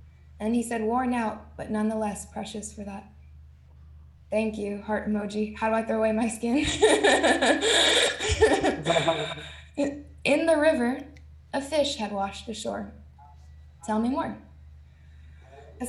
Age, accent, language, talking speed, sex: 10-29, American, English, 125 wpm, female